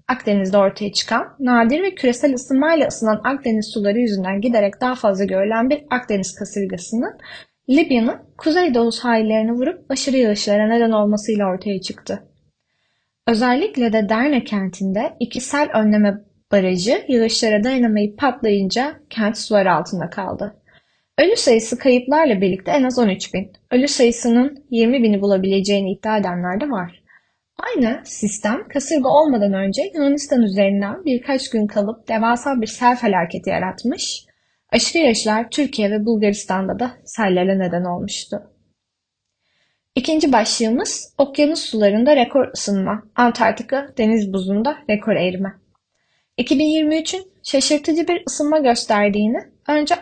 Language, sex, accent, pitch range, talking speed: Turkish, female, native, 205-270 Hz, 120 wpm